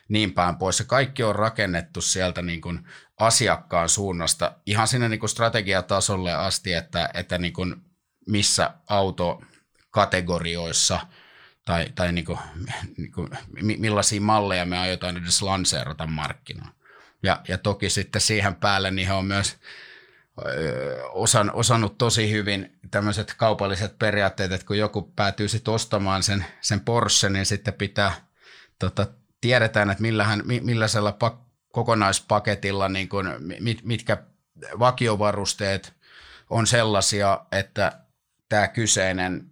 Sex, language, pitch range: male, Finnish, 95-110 Hz